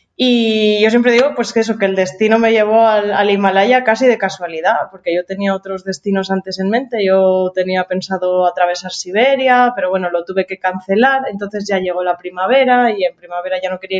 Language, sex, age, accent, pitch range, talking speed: Spanish, female, 20-39, Spanish, 180-225 Hz, 205 wpm